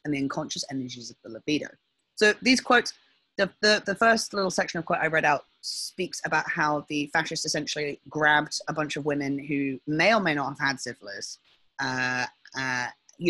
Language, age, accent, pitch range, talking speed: English, 30-49, British, 135-165 Hz, 195 wpm